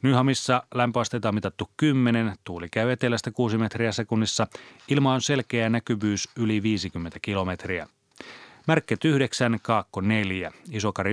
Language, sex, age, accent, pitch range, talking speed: Finnish, male, 30-49, native, 100-130 Hz, 125 wpm